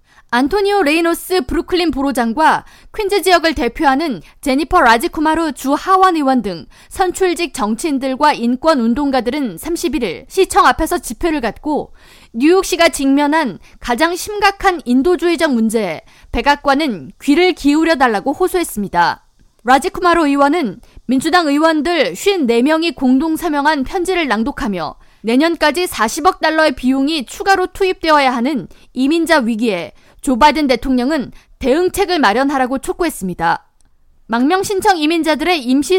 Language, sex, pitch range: Korean, female, 260-345 Hz